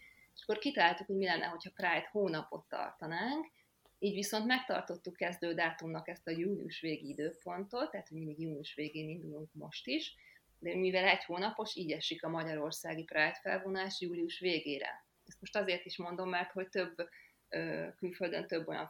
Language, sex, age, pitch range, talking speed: Hungarian, female, 30-49, 155-190 Hz, 155 wpm